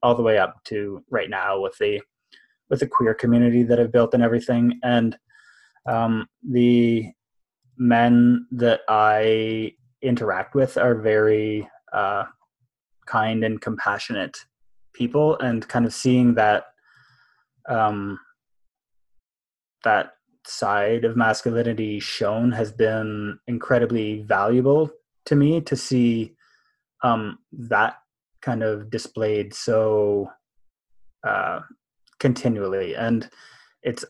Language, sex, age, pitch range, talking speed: English, male, 20-39, 110-130 Hz, 110 wpm